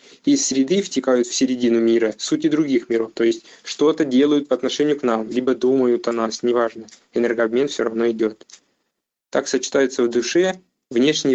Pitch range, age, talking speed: 110-135 Hz, 20-39, 165 wpm